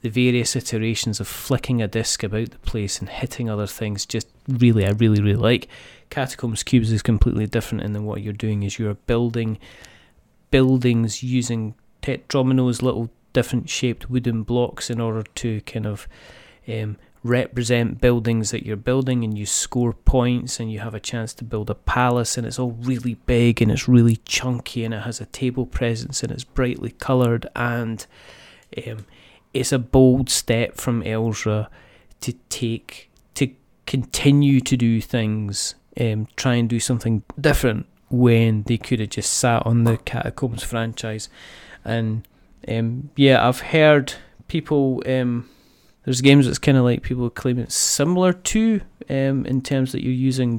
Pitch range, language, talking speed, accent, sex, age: 110-130 Hz, English, 165 wpm, British, male, 30-49